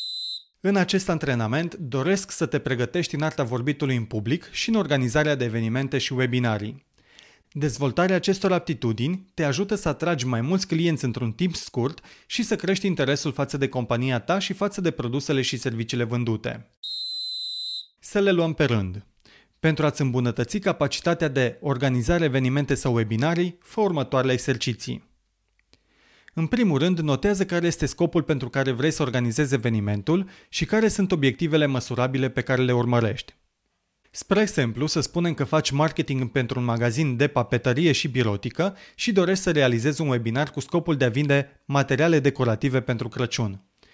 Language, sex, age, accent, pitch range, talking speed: Romanian, male, 30-49, native, 125-170 Hz, 155 wpm